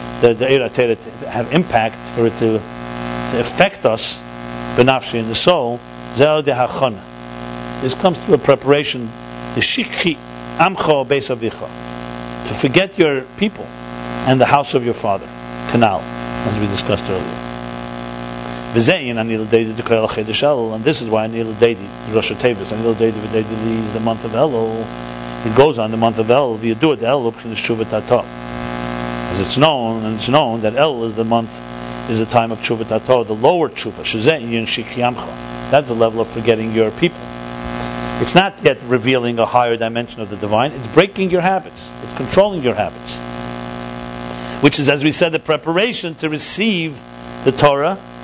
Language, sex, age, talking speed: English, male, 60-79, 165 wpm